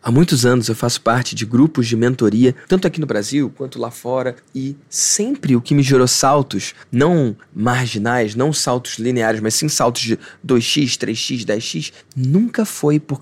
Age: 20-39